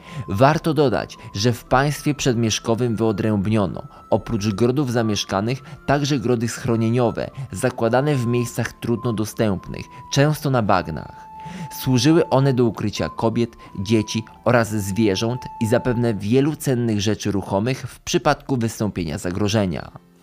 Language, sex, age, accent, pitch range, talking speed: Polish, male, 20-39, native, 110-130 Hz, 115 wpm